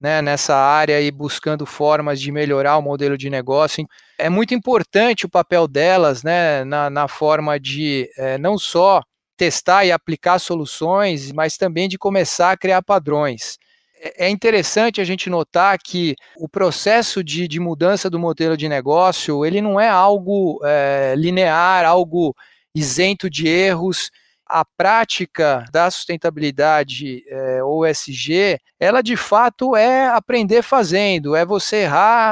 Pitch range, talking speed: 155-190 Hz, 135 wpm